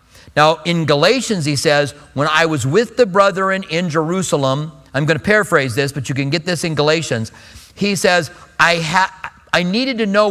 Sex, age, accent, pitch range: male, 40-59, American, 160-215 Hz